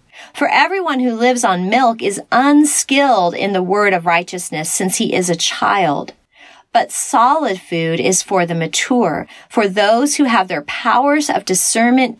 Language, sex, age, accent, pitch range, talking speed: English, female, 30-49, American, 185-260 Hz, 160 wpm